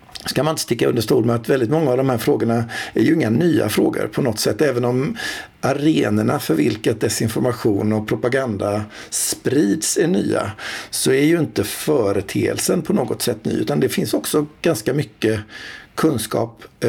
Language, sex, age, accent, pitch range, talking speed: Swedish, male, 60-79, native, 110-140 Hz, 170 wpm